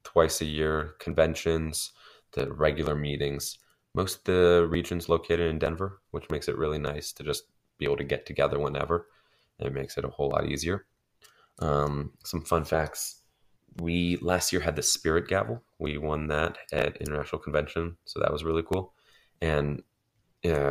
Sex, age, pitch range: male, 20-39, 75-85 Hz